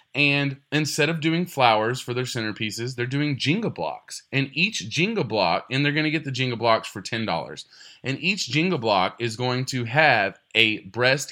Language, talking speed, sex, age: English, 190 wpm, male, 20-39